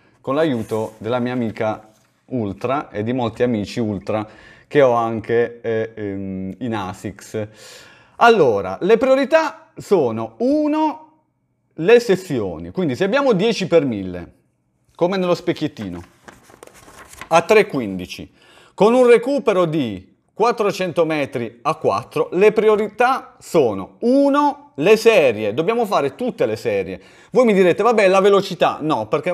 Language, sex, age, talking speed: Italian, male, 30-49, 125 wpm